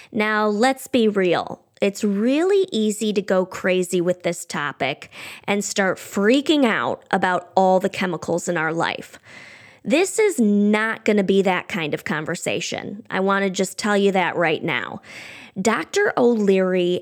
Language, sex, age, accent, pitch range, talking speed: English, female, 20-39, American, 185-230 Hz, 160 wpm